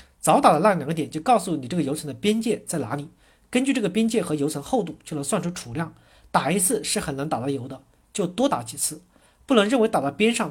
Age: 40-59